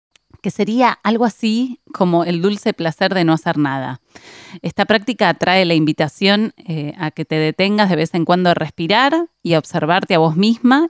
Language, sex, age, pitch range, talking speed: Spanish, female, 30-49, 155-215 Hz, 185 wpm